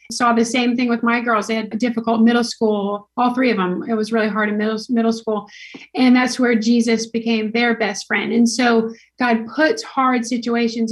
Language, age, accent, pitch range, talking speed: English, 30-49, American, 225-250 Hz, 215 wpm